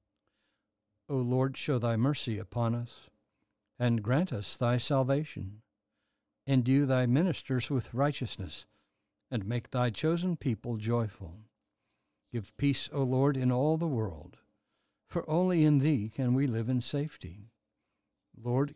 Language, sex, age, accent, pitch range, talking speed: English, male, 60-79, American, 115-140 Hz, 130 wpm